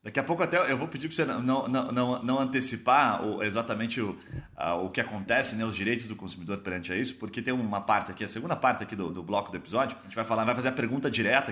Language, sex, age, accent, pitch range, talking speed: Portuguese, male, 30-49, Brazilian, 105-135 Hz, 270 wpm